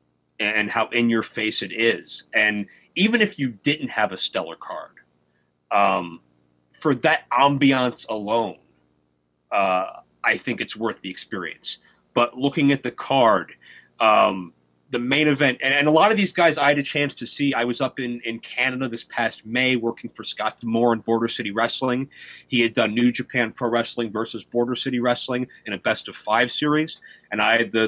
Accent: American